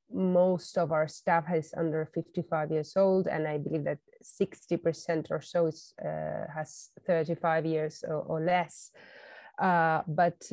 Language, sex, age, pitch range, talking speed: English, female, 20-39, 165-190 Hz, 150 wpm